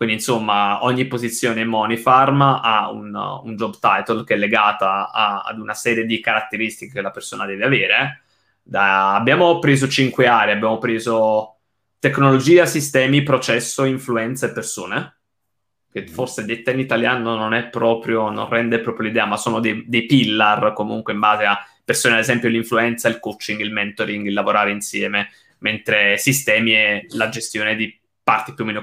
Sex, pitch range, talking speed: male, 105-125 Hz, 165 wpm